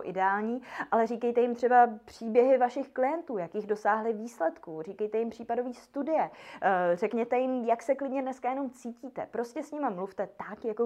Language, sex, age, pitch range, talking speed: Czech, female, 20-39, 195-245 Hz, 160 wpm